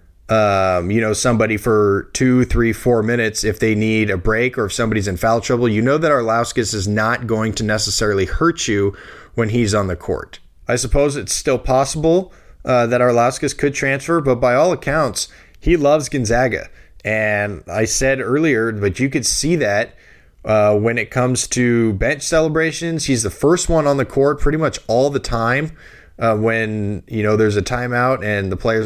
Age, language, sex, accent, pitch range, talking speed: 20-39, English, male, American, 105-130 Hz, 190 wpm